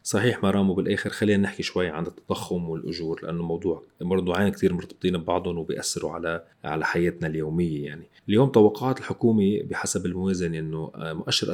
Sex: male